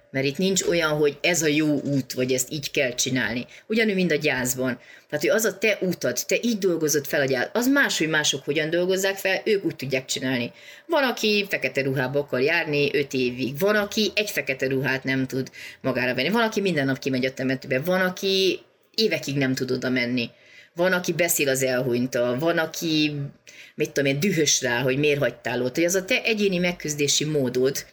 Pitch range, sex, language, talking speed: 140-185 Hz, female, Hungarian, 200 wpm